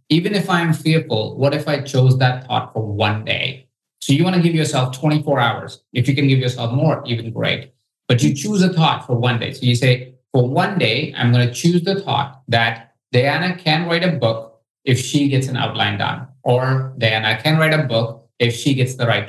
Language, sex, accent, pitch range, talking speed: English, male, Indian, 125-155 Hz, 225 wpm